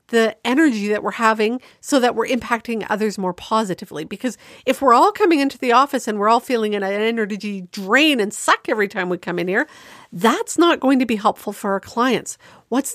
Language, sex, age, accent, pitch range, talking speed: English, female, 50-69, American, 205-280 Hz, 210 wpm